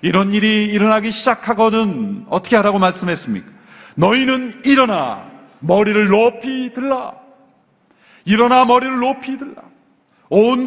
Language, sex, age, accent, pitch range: Korean, male, 40-59, native, 205-245 Hz